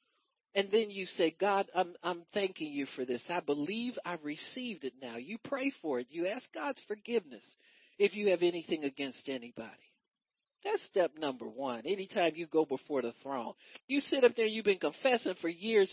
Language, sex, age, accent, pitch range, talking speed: English, male, 50-69, American, 195-280 Hz, 190 wpm